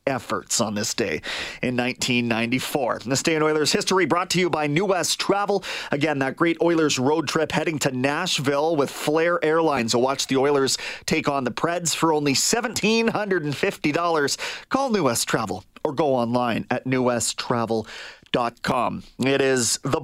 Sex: male